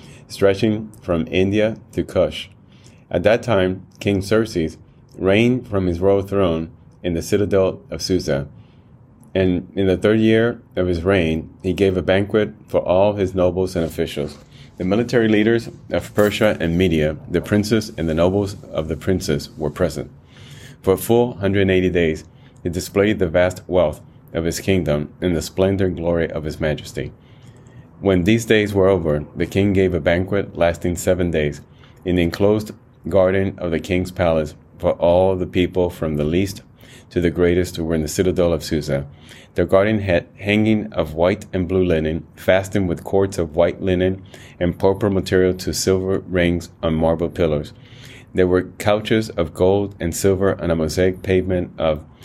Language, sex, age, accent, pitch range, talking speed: English, male, 30-49, American, 85-105 Hz, 170 wpm